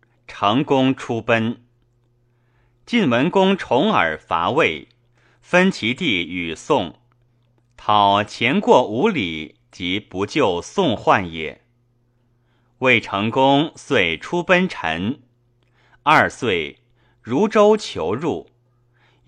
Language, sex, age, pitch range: Chinese, male, 30-49, 115-125 Hz